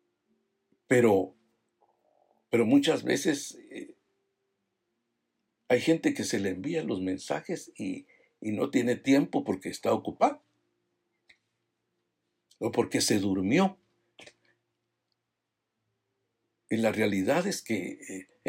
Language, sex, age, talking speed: Spanish, male, 60-79, 100 wpm